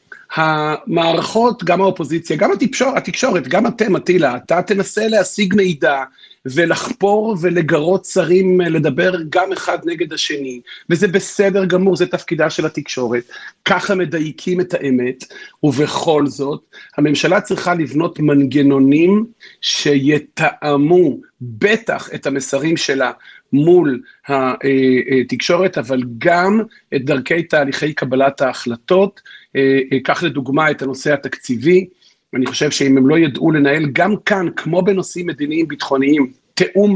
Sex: male